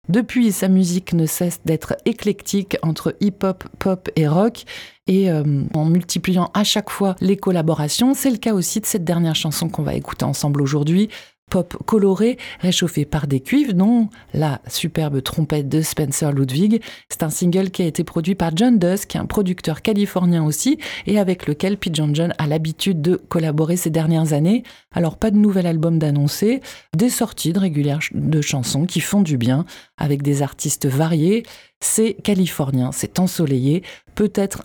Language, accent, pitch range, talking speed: French, French, 155-200 Hz, 170 wpm